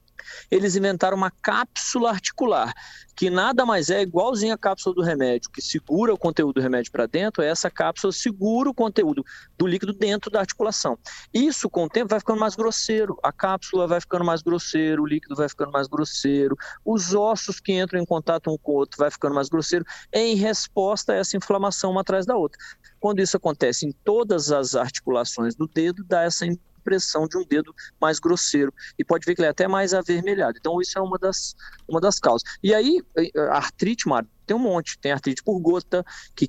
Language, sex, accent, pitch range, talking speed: Portuguese, male, Brazilian, 145-195 Hz, 195 wpm